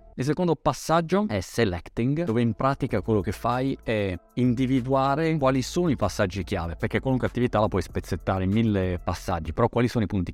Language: Italian